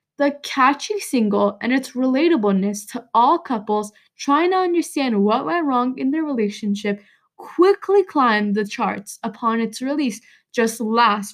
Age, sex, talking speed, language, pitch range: 10-29, female, 145 wpm, English, 215-290 Hz